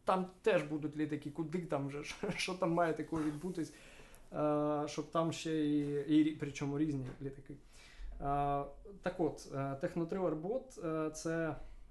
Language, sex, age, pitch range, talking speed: Ukrainian, male, 20-39, 140-160 Hz, 130 wpm